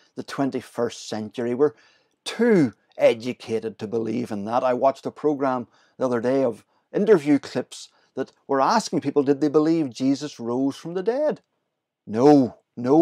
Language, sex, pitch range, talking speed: English, male, 125-155 Hz, 155 wpm